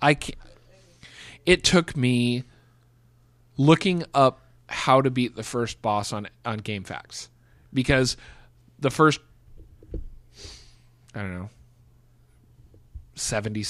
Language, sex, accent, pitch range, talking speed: English, male, American, 115-170 Hz, 105 wpm